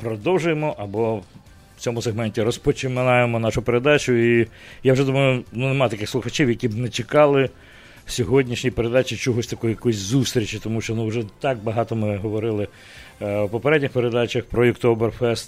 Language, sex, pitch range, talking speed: English, male, 110-130 Hz, 160 wpm